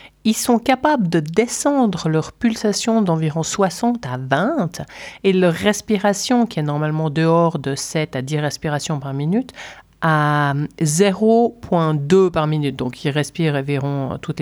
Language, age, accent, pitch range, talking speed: French, 50-69, French, 150-195 Hz, 140 wpm